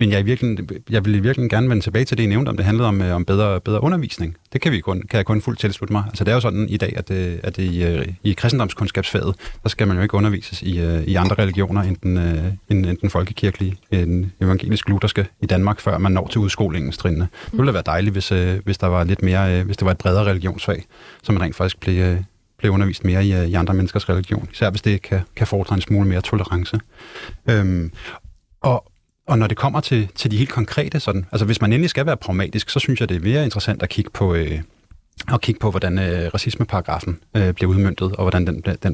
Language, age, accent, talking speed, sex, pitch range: Danish, 30-49, native, 240 wpm, male, 95-110 Hz